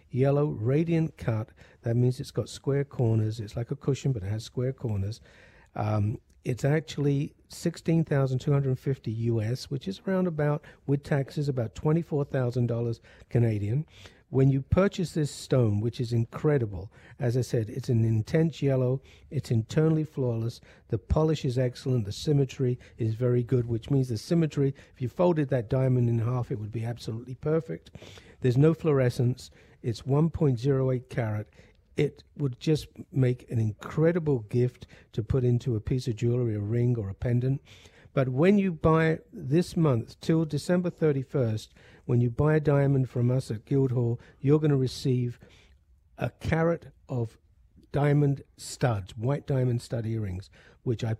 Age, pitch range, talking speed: 60-79, 115-145 Hz, 165 wpm